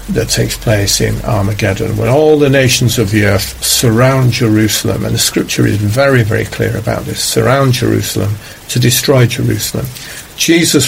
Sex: male